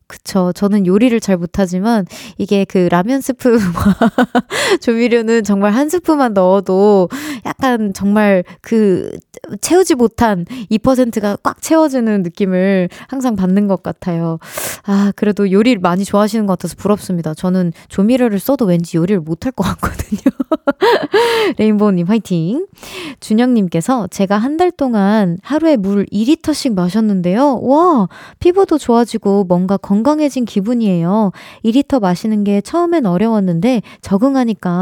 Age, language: 20-39, Korean